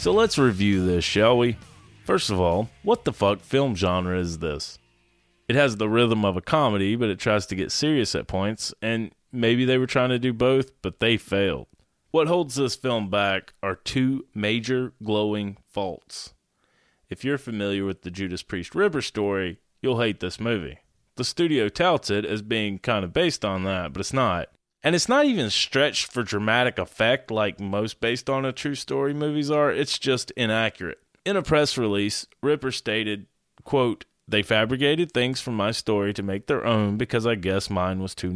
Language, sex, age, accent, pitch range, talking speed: English, male, 20-39, American, 95-130 Hz, 190 wpm